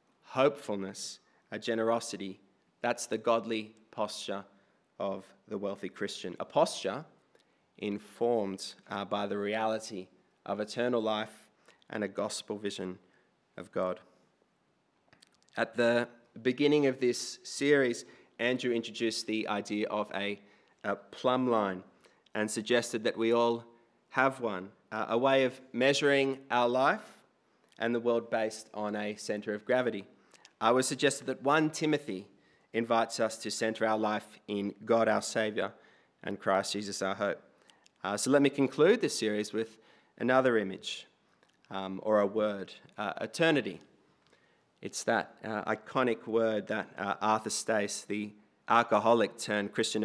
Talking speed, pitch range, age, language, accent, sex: 140 wpm, 100-120 Hz, 20-39, English, Australian, male